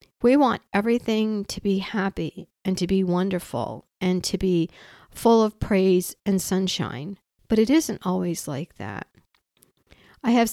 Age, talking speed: 50-69, 150 wpm